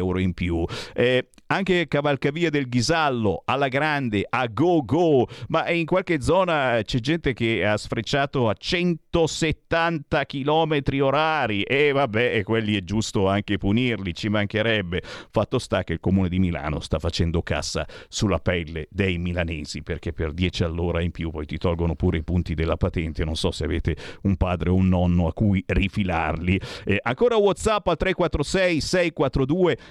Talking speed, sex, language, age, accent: 165 wpm, male, Italian, 50-69, native